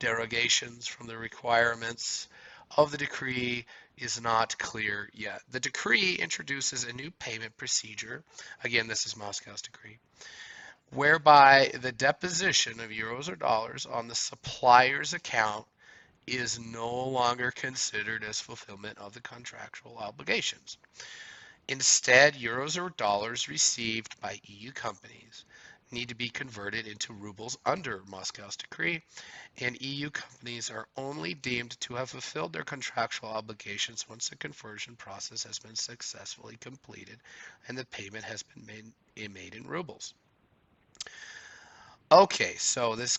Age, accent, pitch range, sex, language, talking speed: 30-49, American, 110-130 Hz, male, English, 130 wpm